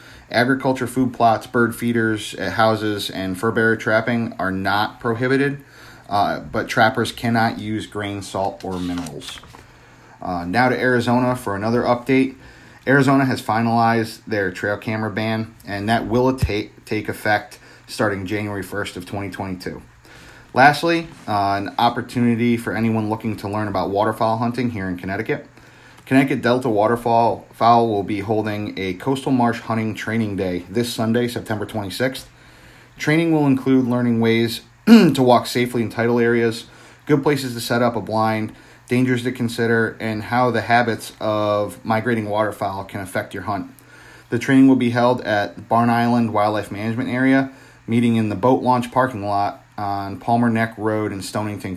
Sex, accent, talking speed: male, American, 155 wpm